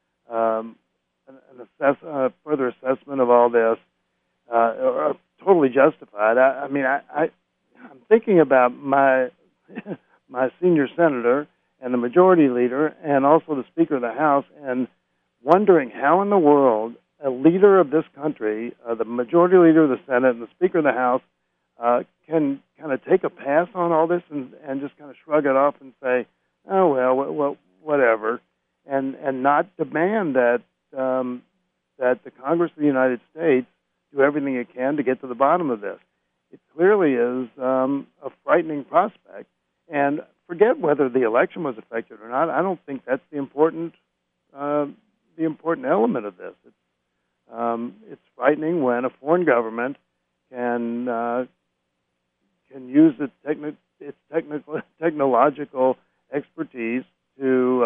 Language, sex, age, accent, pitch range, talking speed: English, male, 60-79, American, 120-150 Hz, 165 wpm